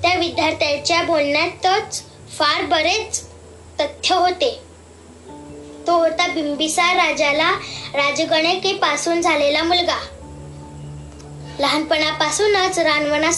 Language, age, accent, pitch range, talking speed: Marathi, 20-39, native, 300-350 Hz, 65 wpm